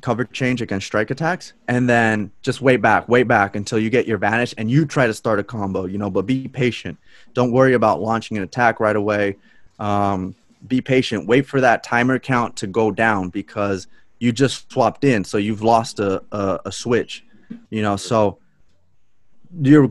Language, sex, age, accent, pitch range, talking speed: English, male, 20-39, American, 100-125 Hz, 195 wpm